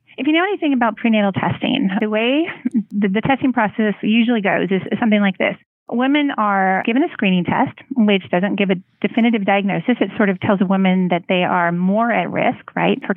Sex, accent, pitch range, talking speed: female, American, 190-235 Hz, 210 wpm